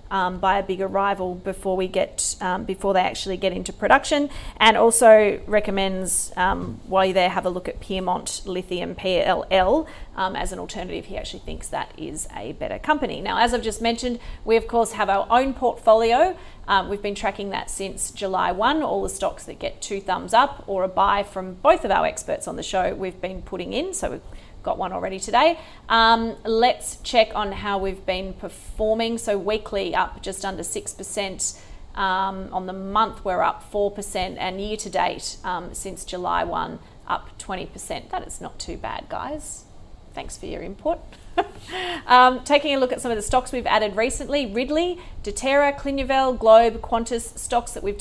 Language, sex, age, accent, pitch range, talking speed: English, female, 40-59, Australian, 190-240 Hz, 185 wpm